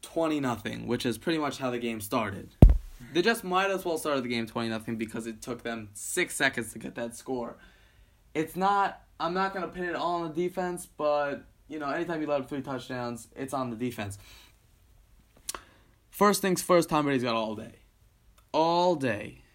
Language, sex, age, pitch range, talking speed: English, male, 20-39, 120-180 Hz, 200 wpm